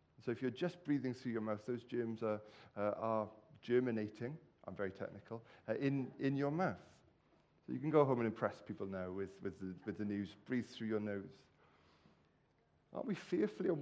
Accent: British